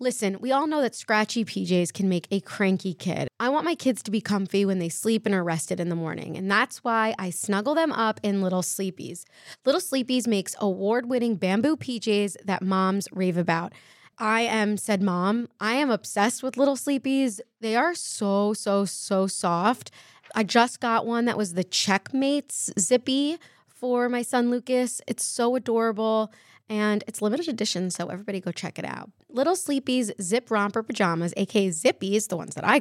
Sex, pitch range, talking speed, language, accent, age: female, 195-245 Hz, 185 wpm, English, American, 20-39